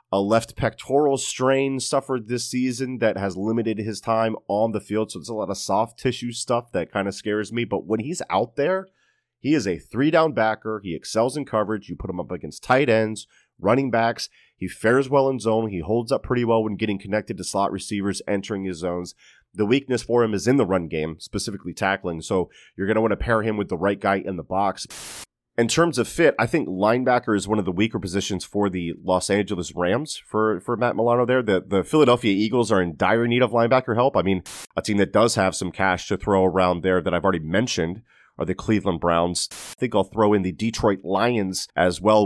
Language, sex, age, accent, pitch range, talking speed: English, male, 30-49, American, 95-115 Hz, 230 wpm